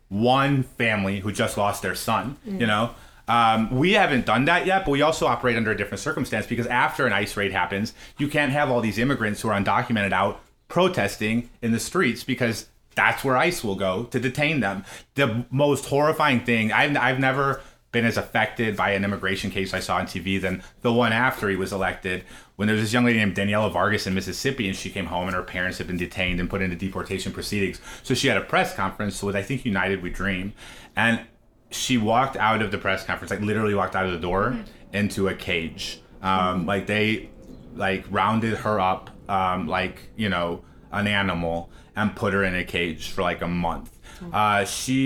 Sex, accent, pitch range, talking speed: male, American, 95-120 Hz, 210 wpm